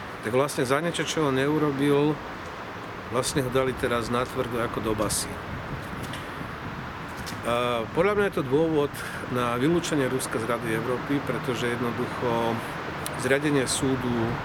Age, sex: 50-69, male